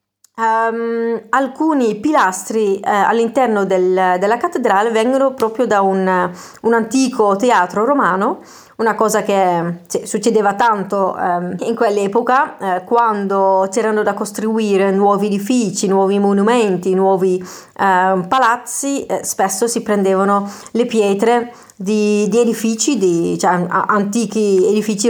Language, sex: Italian, female